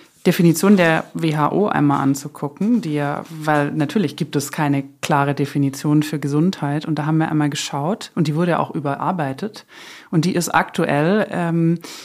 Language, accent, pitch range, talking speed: German, German, 150-180 Hz, 160 wpm